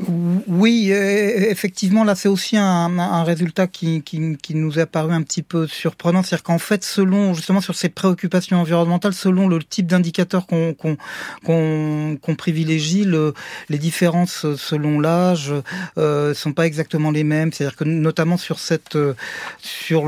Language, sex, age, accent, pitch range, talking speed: French, male, 40-59, French, 145-175 Hz, 160 wpm